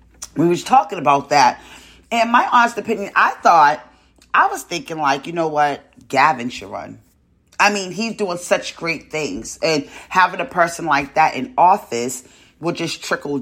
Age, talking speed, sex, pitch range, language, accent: 30-49, 175 wpm, female, 130-170 Hz, English, American